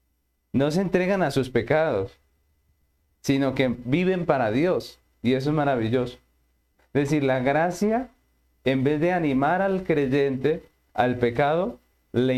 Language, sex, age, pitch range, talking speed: Spanish, male, 40-59, 105-145 Hz, 135 wpm